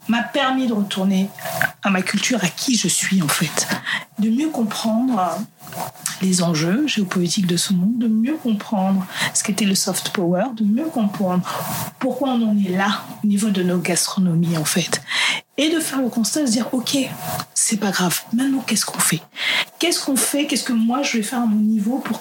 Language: French